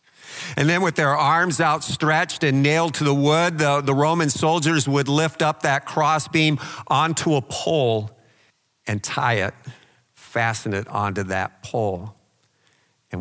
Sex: male